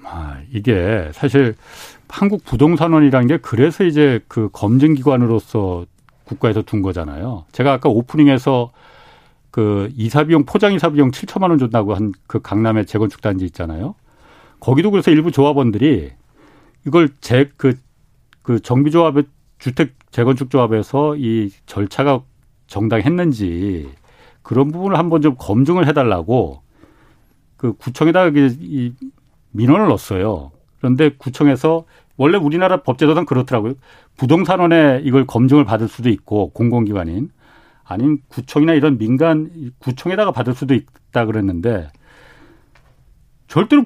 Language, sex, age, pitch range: Korean, male, 40-59, 110-150 Hz